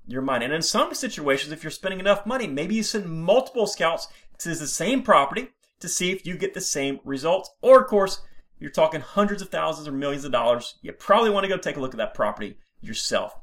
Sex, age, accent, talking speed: male, 30-49, American, 230 wpm